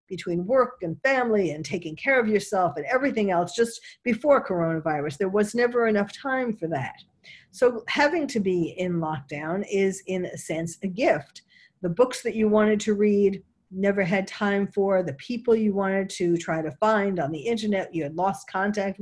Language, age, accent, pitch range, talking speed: English, 50-69, American, 180-230 Hz, 190 wpm